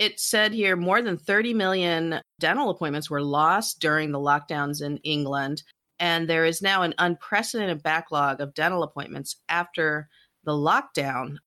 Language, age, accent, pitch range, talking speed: English, 40-59, American, 140-165 Hz, 150 wpm